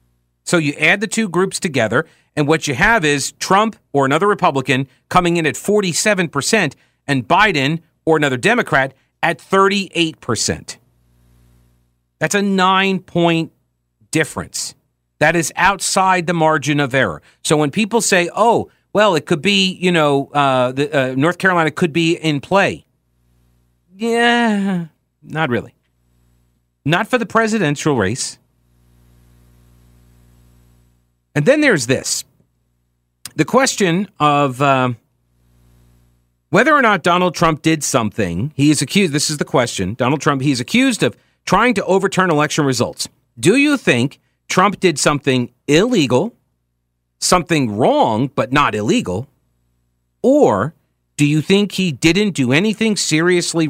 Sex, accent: male, American